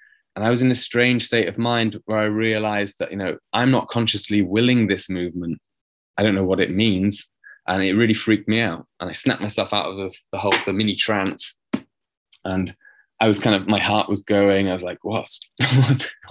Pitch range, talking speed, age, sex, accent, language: 95-120 Hz, 215 wpm, 20-39, male, British, English